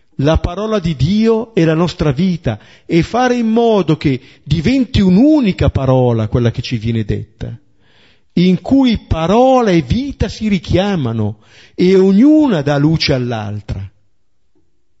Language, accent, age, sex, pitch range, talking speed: Italian, native, 50-69, male, 120-205 Hz, 130 wpm